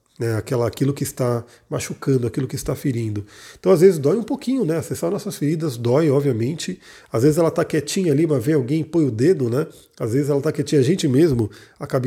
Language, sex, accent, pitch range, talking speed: Portuguese, male, Brazilian, 130-160 Hz, 220 wpm